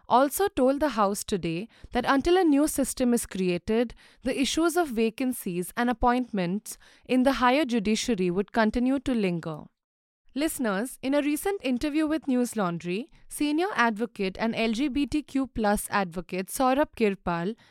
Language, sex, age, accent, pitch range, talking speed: English, female, 20-39, Indian, 205-275 Hz, 140 wpm